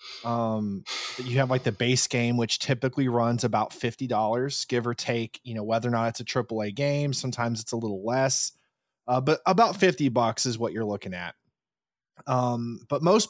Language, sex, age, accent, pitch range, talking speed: English, male, 30-49, American, 115-140 Hz, 195 wpm